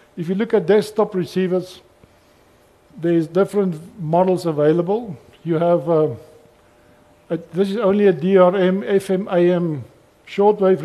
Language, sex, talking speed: English, male, 115 wpm